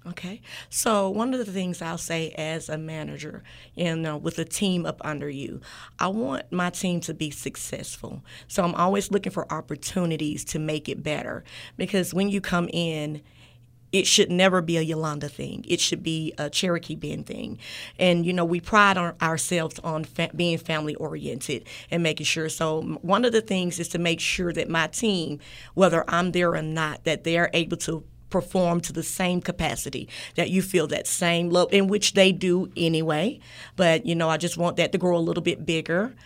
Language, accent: English, American